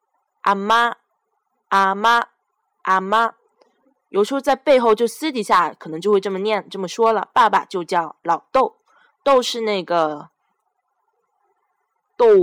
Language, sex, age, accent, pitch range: Chinese, female, 10-29, native, 170-270 Hz